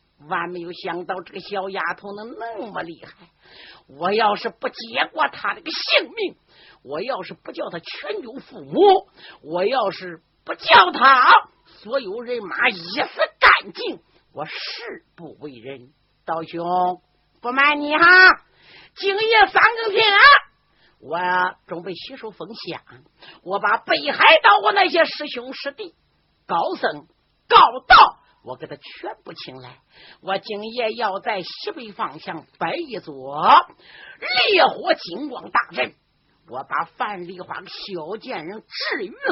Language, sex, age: Chinese, female, 50-69